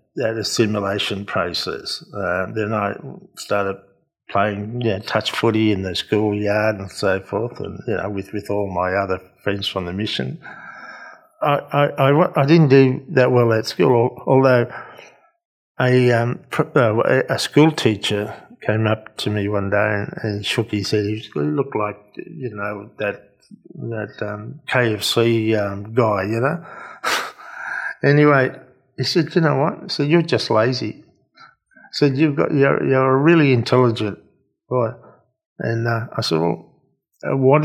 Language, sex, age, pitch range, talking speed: English, male, 50-69, 105-135 Hz, 155 wpm